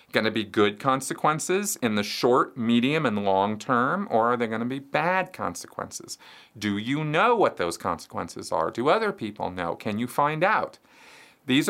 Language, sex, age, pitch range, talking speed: English, male, 40-59, 110-170 Hz, 185 wpm